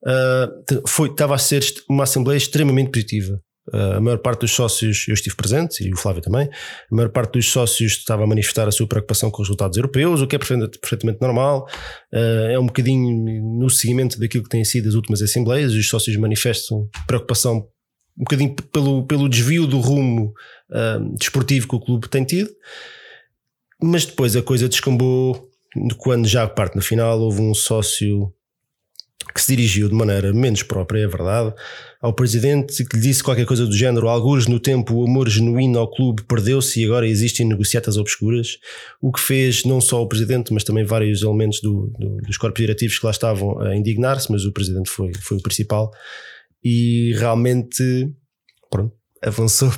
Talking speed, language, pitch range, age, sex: 180 wpm, Portuguese, 110-130 Hz, 20-39, male